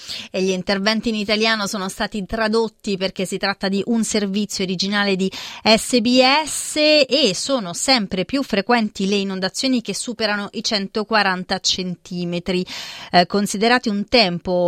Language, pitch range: Italian, 185-235 Hz